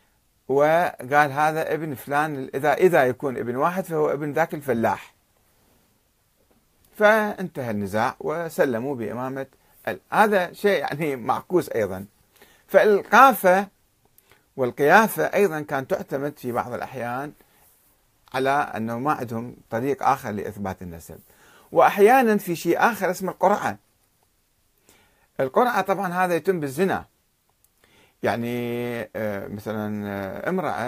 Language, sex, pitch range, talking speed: Arabic, male, 110-170 Hz, 100 wpm